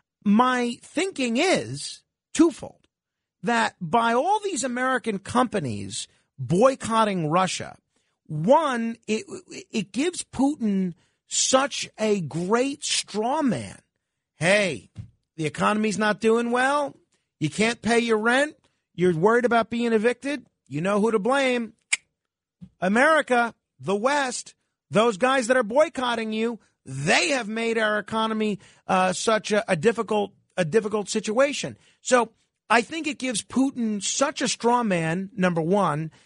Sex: male